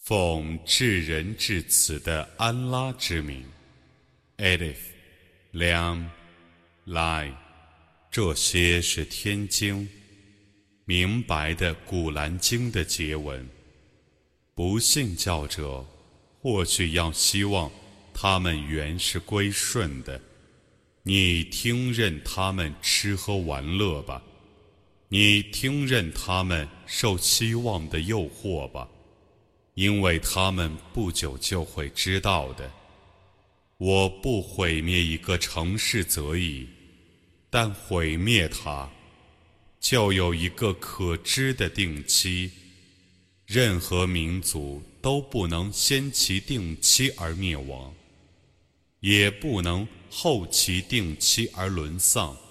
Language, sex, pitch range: Arabic, male, 80-100 Hz